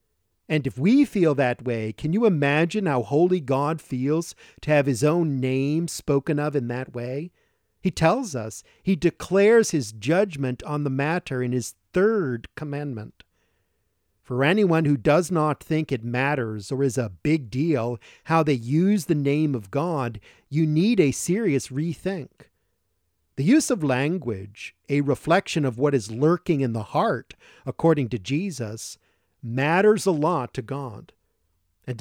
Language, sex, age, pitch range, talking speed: English, male, 50-69, 120-165 Hz, 155 wpm